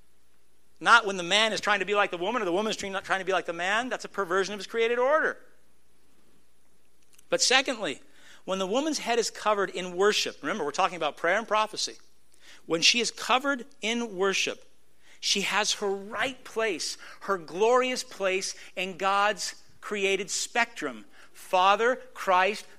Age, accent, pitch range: 50-69, American, 205-265 Hz